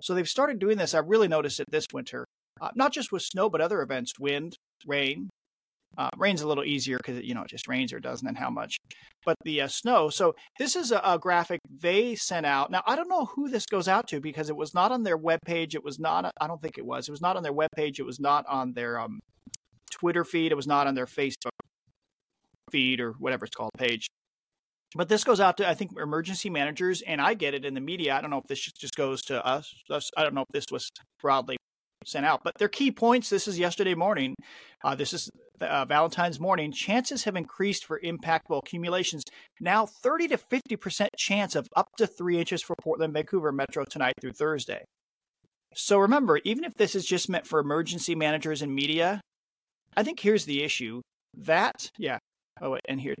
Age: 40-59